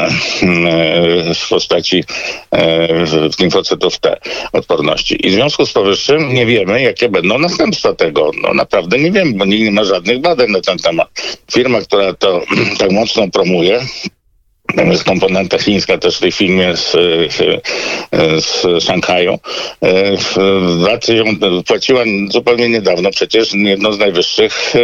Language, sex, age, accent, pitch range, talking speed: Polish, male, 50-69, native, 90-140 Hz, 135 wpm